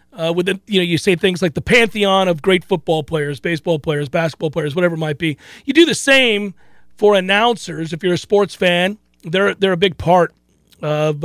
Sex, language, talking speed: male, English, 210 wpm